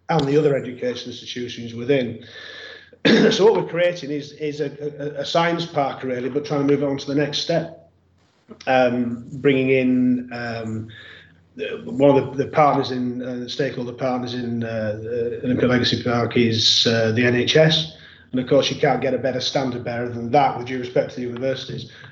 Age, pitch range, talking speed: 30-49, 120-145 Hz, 185 wpm